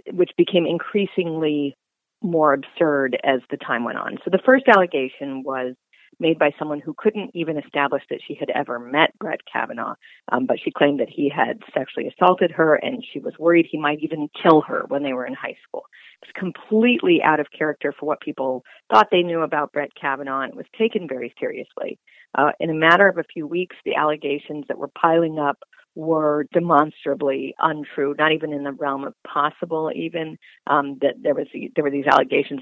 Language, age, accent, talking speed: English, 40-59, American, 200 wpm